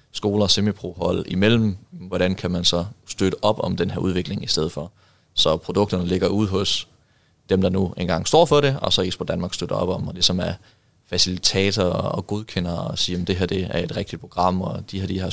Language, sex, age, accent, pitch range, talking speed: Danish, male, 20-39, native, 90-105 Hz, 225 wpm